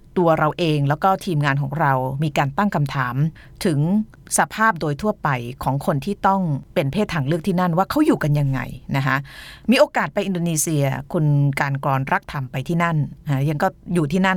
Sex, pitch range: female, 140-185 Hz